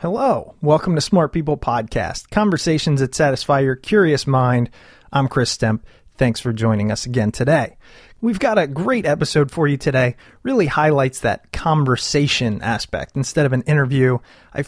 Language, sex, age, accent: English, male, 30-49, American